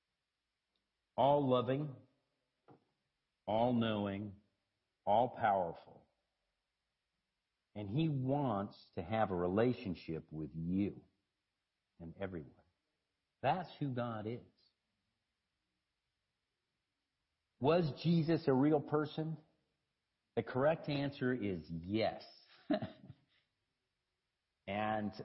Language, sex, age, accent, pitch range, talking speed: English, male, 50-69, American, 90-125 Hz, 75 wpm